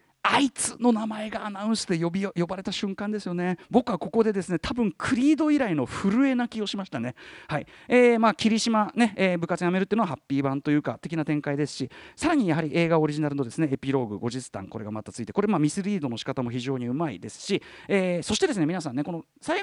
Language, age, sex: Japanese, 40-59, male